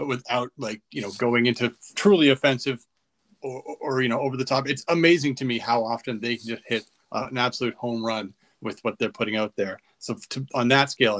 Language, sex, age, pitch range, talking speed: English, male, 30-49, 115-140 Hz, 230 wpm